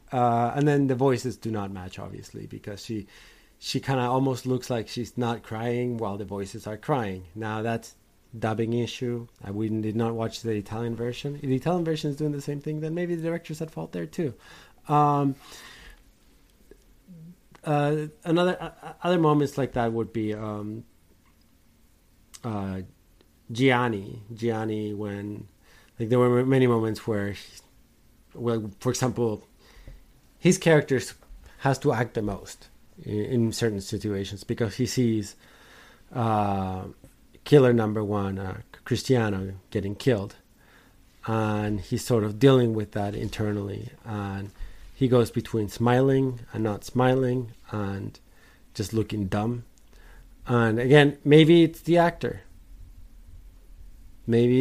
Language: English